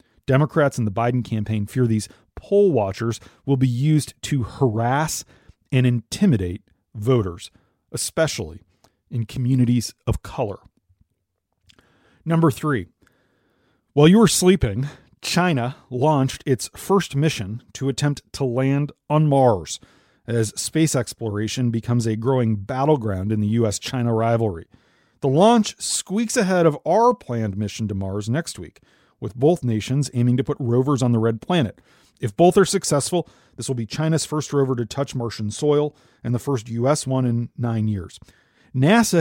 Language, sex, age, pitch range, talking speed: English, male, 40-59, 110-145 Hz, 145 wpm